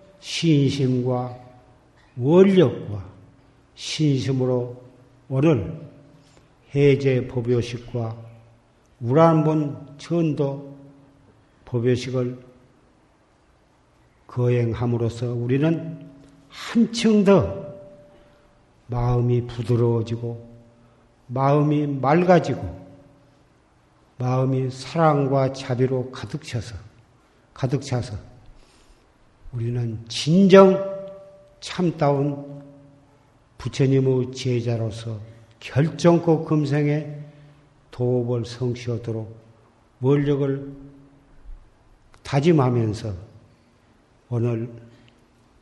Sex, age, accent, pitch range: male, 50-69, native, 115-145 Hz